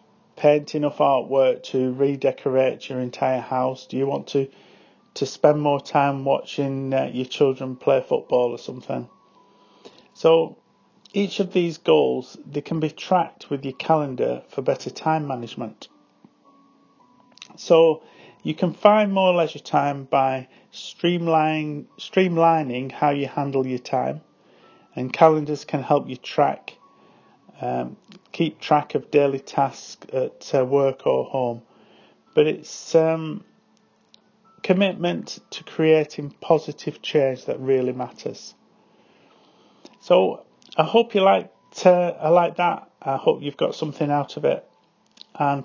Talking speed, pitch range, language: 130 wpm, 135-180 Hz, English